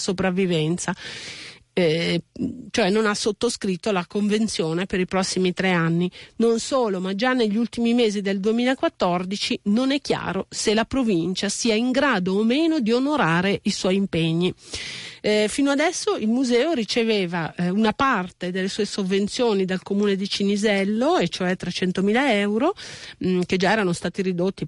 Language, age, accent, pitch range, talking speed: Italian, 40-59, native, 180-220 Hz, 155 wpm